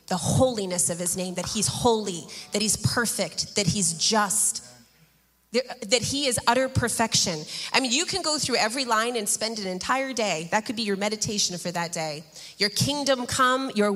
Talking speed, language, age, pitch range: 190 wpm, English, 30-49, 205-270 Hz